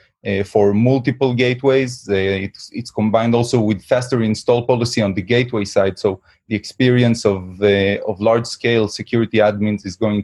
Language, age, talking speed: English, 30-49, 165 wpm